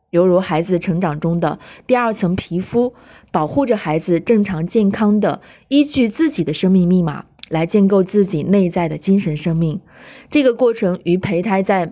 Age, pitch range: 20-39, 170-230 Hz